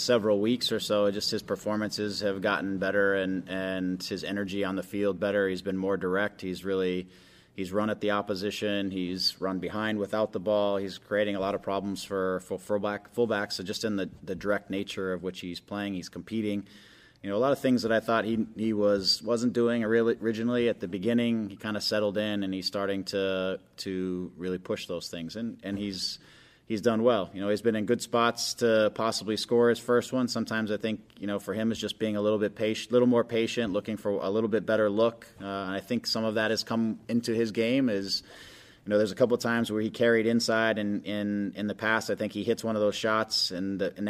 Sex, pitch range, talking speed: male, 100-110 Hz, 235 wpm